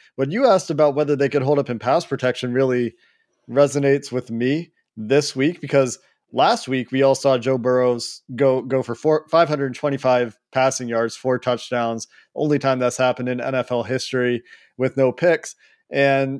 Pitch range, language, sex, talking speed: 120-140 Hz, English, male, 165 wpm